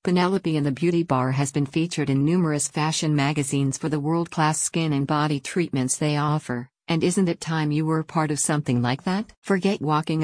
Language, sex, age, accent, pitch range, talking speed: English, female, 50-69, American, 140-165 Hz, 200 wpm